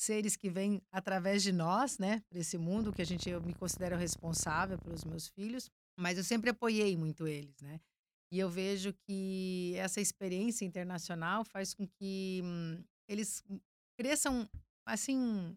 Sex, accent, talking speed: female, Brazilian, 160 wpm